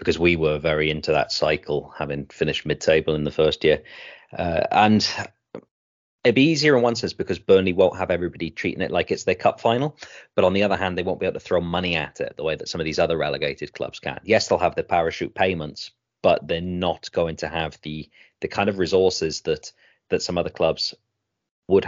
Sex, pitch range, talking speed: male, 80-105 Hz, 225 wpm